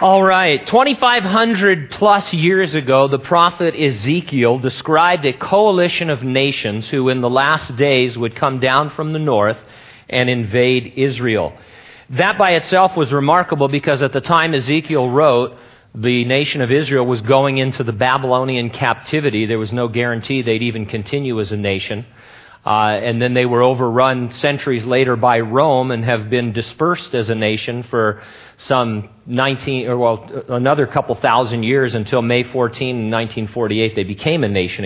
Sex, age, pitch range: male, 40-59, 115-145 Hz